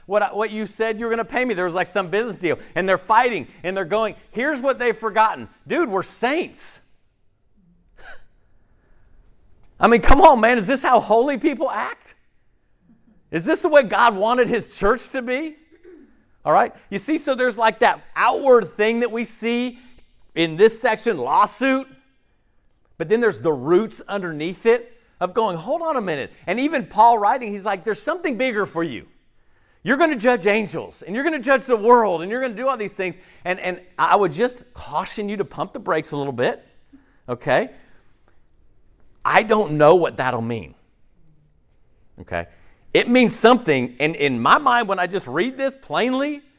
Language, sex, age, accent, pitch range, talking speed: English, male, 50-69, American, 185-260 Hz, 190 wpm